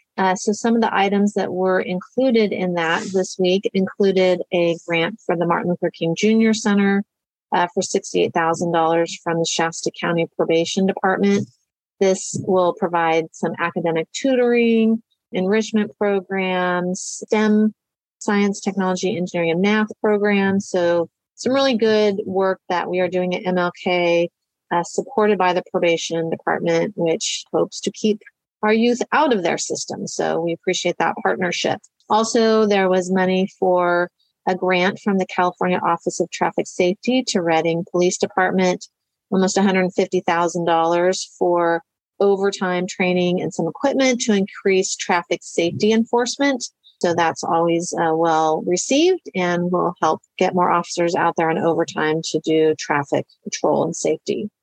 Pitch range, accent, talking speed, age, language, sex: 170-205 Hz, American, 145 wpm, 40-59, English, female